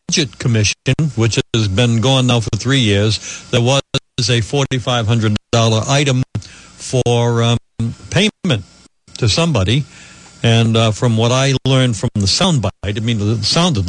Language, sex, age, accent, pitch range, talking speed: English, male, 60-79, American, 110-135 Hz, 145 wpm